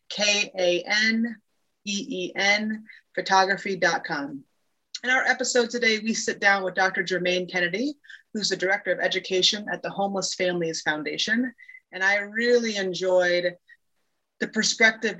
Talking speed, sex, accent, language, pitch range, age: 115 wpm, female, American, English, 175-210 Hz, 20-39